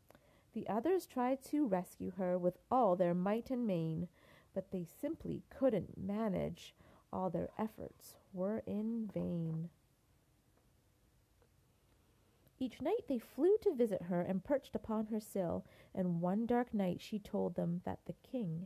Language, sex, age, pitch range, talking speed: English, female, 30-49, 170-235 Hz, 145 wpm